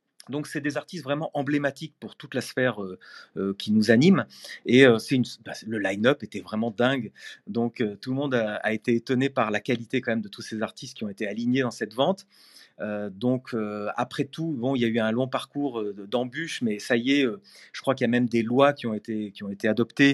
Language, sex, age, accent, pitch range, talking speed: French, male, 40-59, French, 115-155 Hz, 250 wpm